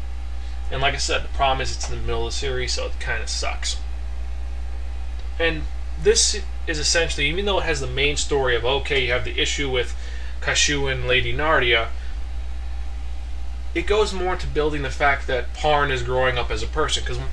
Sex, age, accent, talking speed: male, 30-49, American, 195 wpm